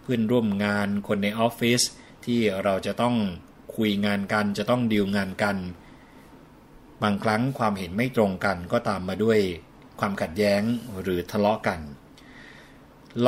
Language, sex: Thai, male